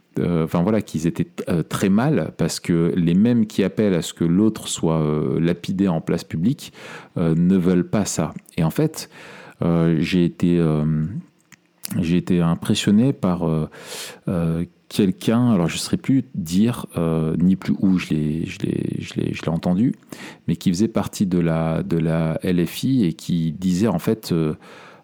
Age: 40-59